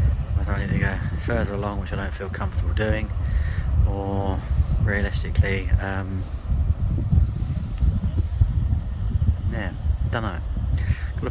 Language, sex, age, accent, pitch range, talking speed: English, male, 30-49, British, 85-100 Hz, 95 wpm